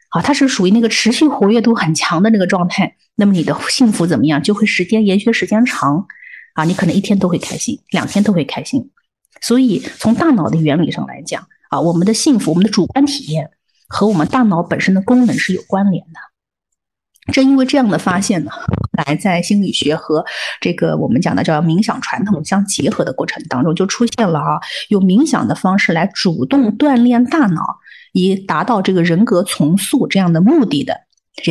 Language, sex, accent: Chinese, female, native